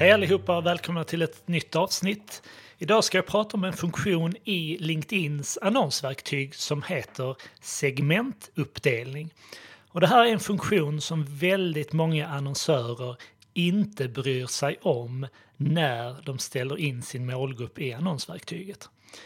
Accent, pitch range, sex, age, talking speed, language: native, 140-180 Hz, male, 30-49, 130 wpm, Swedish